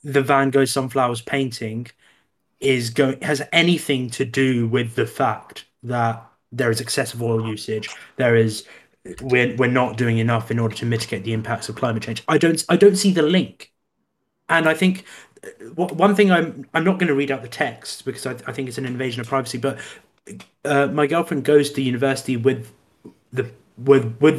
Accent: British